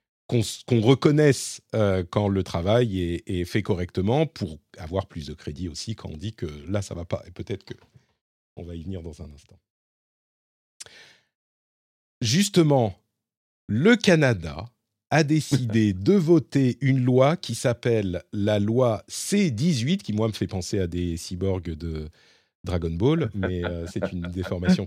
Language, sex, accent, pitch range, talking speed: French, male, French, 95-140 Hz, 155 wpm